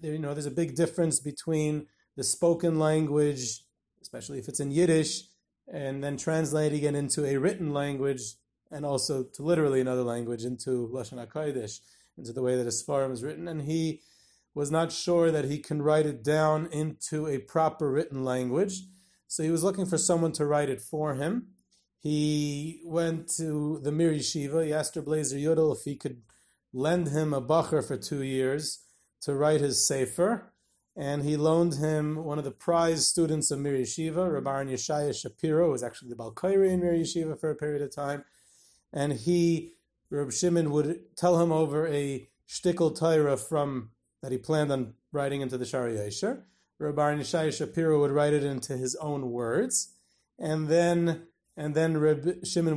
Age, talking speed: 30-49, 175 wpm